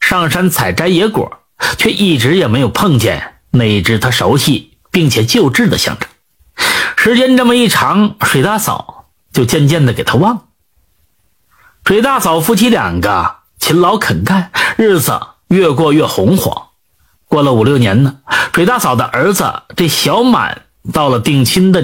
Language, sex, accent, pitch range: Chinese, male, native, 135-225 Hz